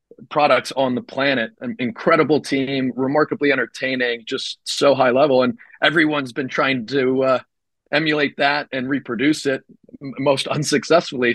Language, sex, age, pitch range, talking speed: English, male, 30-49, 120-140 Hz, 145 wpm